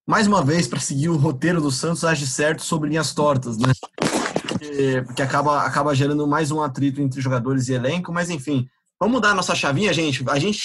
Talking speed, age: 205 wpm, 20-39